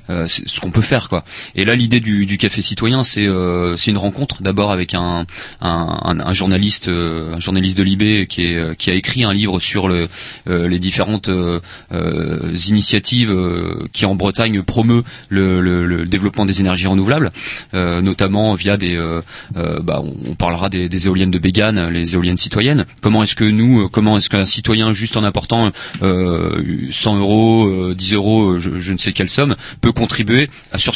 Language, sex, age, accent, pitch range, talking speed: French, male, 30-49, French, 95-120 Hz, 190 wpm